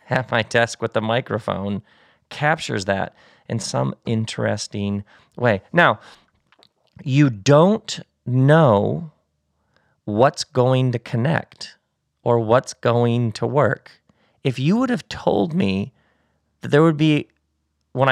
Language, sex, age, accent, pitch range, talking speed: English, male, 40-59, American, 115-150 Hz, 120 wpm